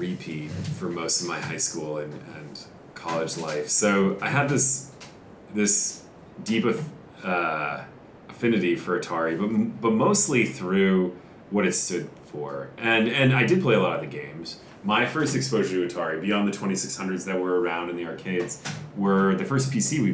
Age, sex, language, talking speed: 30-49, male, English, 175 wpm